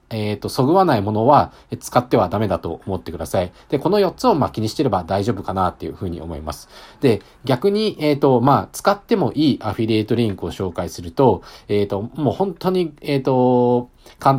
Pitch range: 95-145 Hz